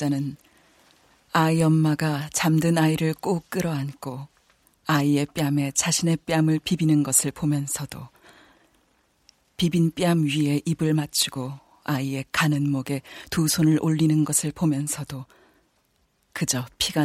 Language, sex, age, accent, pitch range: Korean, female, 40-59, native, 130-160 Hz